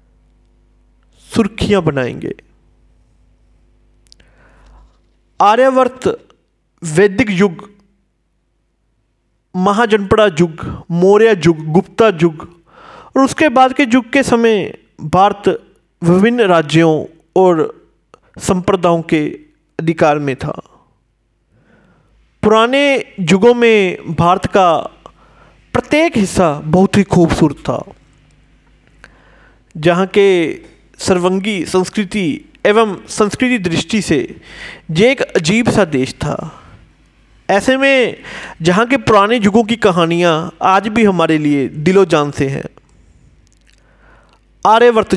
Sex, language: male, Hindi